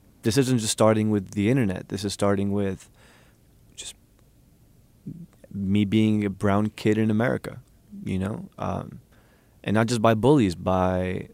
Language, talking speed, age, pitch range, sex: English, 150 wpm, 20-39, 100-115 Hz, male